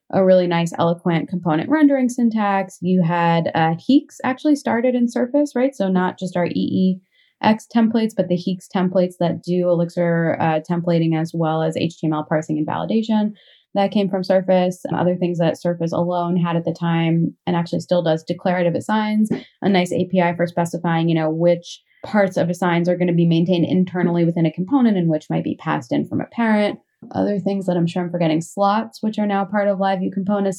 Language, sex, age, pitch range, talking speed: English, female, 20-39, 170-210 Hz, 200 wpm